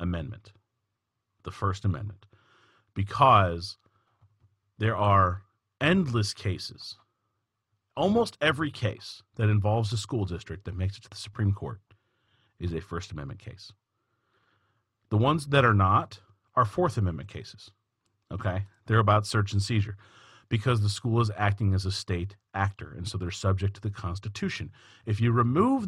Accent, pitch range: American, 100-130 Hz